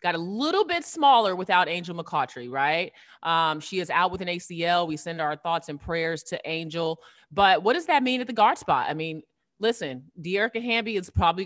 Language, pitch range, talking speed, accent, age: English, 160-210 Hz, 210 wpm, American, 30-49